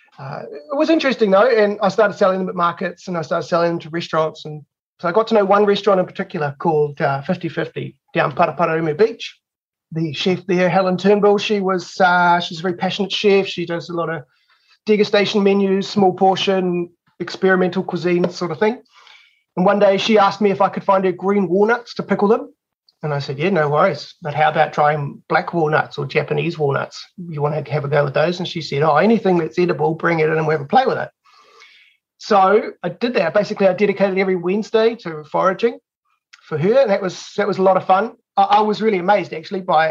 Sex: male